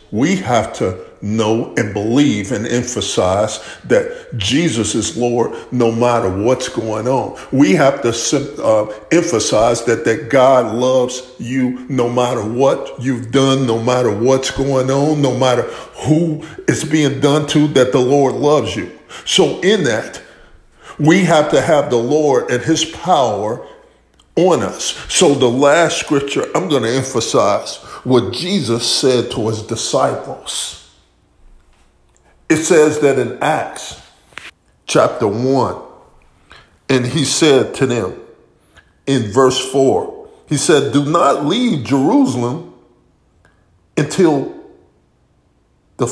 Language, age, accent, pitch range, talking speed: English, 50-69, American, 120-150 Hz, 130 wpm